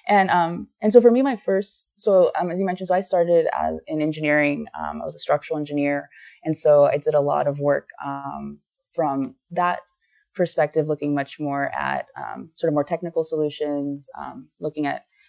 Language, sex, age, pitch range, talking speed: English, female, 20-39, 145-175 Hz, 195 wpm